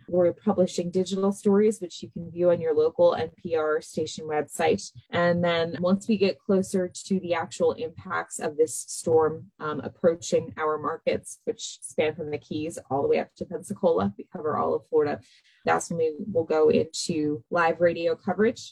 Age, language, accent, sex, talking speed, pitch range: 20-39, English, American, female, 180 wpm, 165-225 Hz